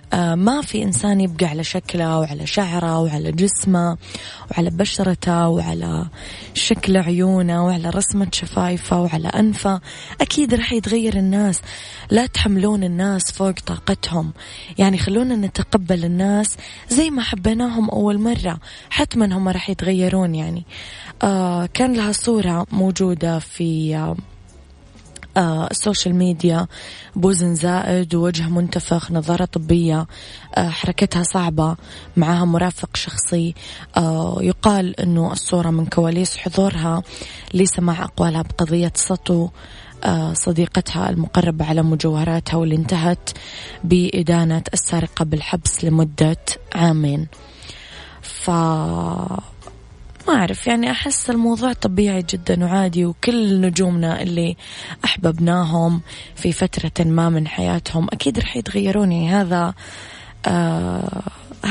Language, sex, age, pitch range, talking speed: Arabic, female, 20-39, 165-195 Hz, 110 wpm